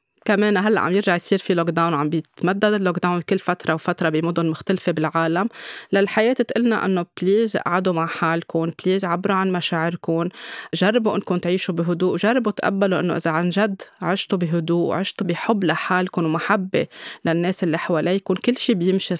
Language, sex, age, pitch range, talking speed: Arabic, female, 20-39, 170-200 Hz, 155 wpm